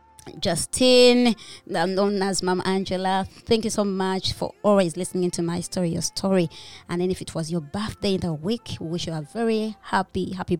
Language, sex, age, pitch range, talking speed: English, male, 20-39, 175-205 Hz, 195 wpm